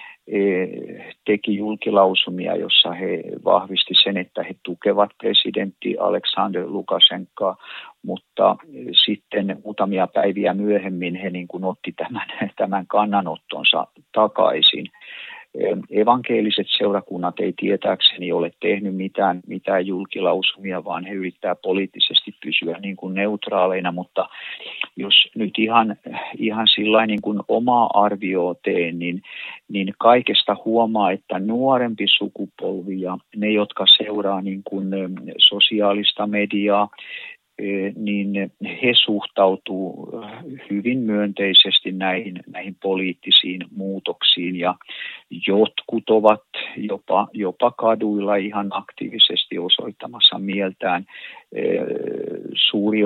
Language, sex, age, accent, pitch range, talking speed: Finnish, male, 50-69, native, 95-110 Hz, 95 wpm